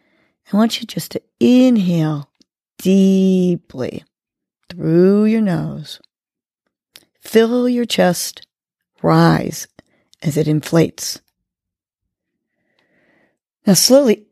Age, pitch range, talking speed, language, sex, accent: 40-59, 160-210 Hz, 80 wpm, English, female, American